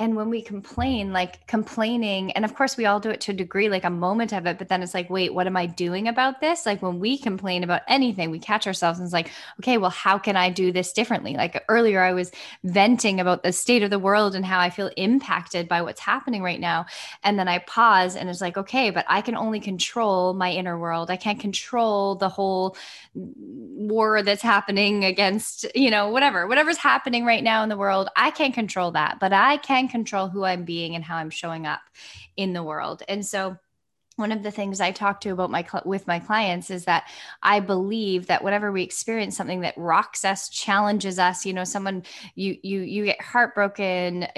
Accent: American